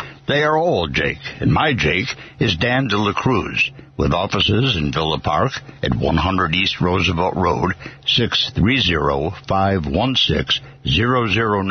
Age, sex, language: 60-79, male, English